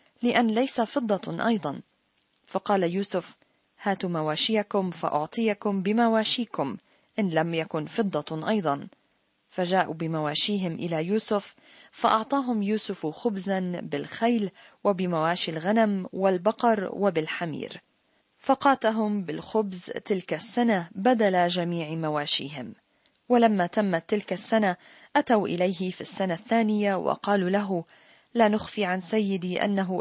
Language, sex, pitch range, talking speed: Arabic, female, 175-220 Hz, 100 wpm